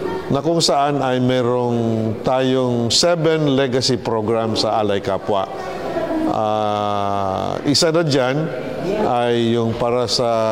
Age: 50-69